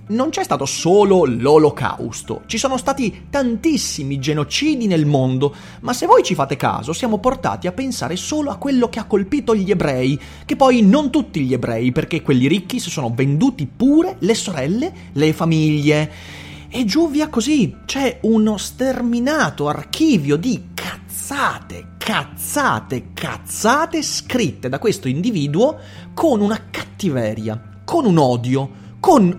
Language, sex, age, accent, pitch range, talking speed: Italian, male, 30-49, native, 140-235 Hz, 145 wpm